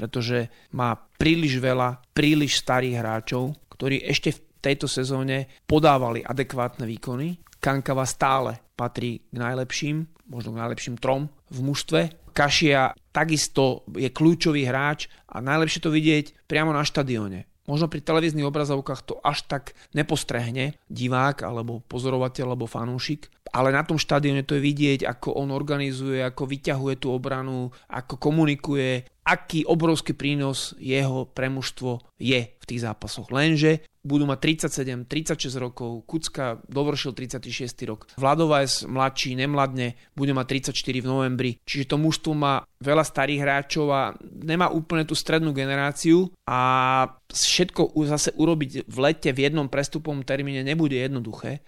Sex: male